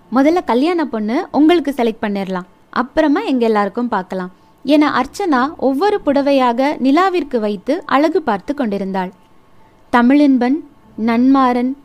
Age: 20-39